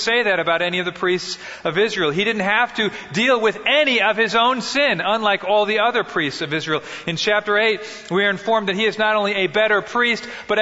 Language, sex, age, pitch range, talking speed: English, male, 40-59, 215-265 Hz, 235 wpm